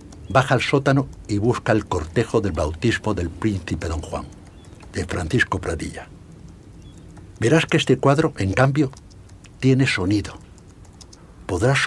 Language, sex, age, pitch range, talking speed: Spanish, male, 60-79, 85-110 Hz, 125 wpm